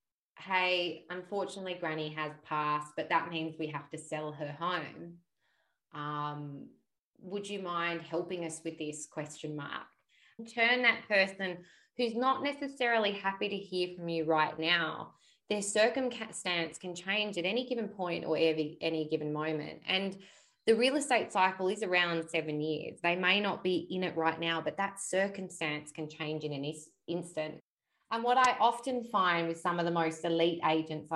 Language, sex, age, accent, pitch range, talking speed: English, female, 20-39, Australian, 155-185 Hz, 165 wpm